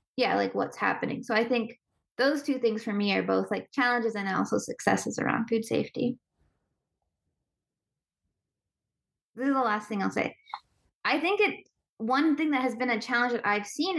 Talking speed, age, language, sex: 180 wpm, 20-39, English, female